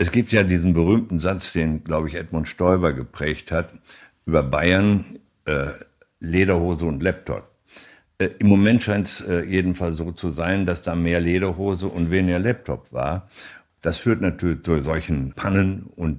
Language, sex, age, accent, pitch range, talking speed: German, male, 60-79, German, 85-100 Hz, 165 wpm